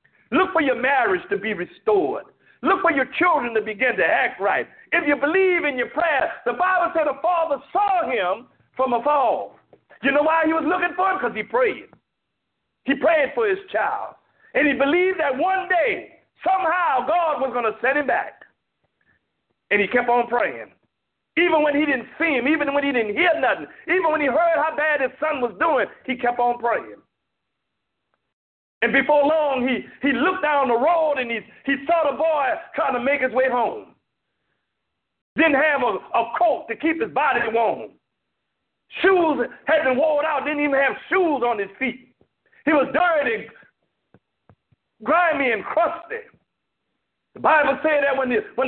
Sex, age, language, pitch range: male, 50-69, English, 260-335 Hz